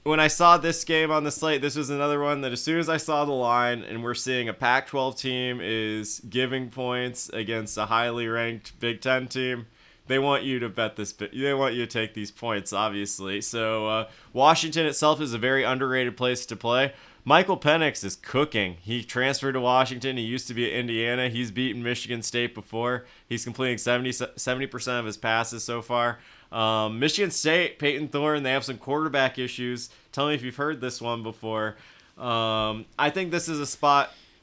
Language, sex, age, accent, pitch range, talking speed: English, male, 20-39, American, 110-140 Hz, 200 wpm